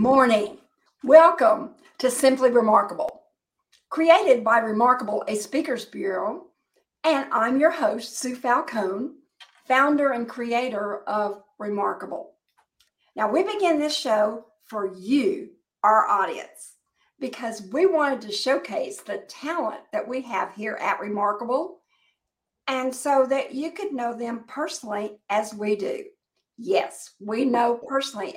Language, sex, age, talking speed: English, female, 50-69, 125 wpm